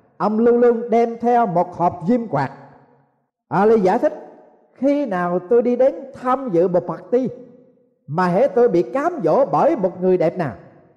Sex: male